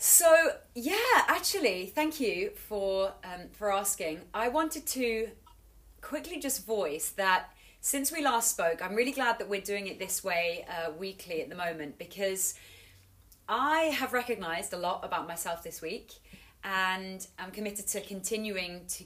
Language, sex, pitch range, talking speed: English, female, 180-225 Hz, 155 wpm